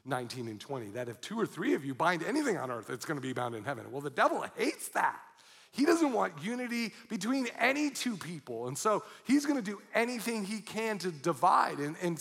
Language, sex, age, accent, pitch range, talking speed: English, male, 40-59, American, 150-220 Hz, 230 wpm